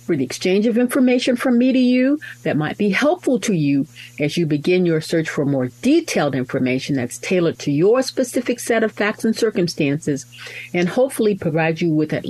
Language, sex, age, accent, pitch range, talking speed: English, female, 50-69, American, 150-250 Hz, 195 wpm